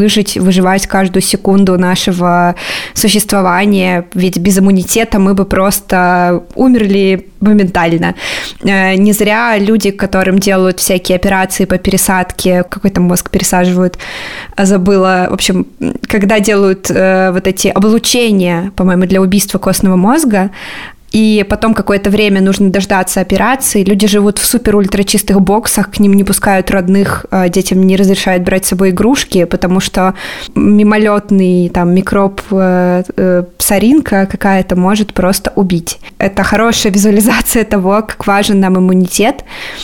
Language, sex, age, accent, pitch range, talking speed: Russian, female, 20-39, native, 185-210 Hz, 125 wpm